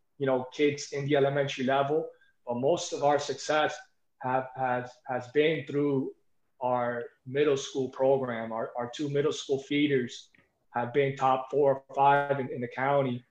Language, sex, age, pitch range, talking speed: English, male, 20-39, 130-155 Hz, 165 wpm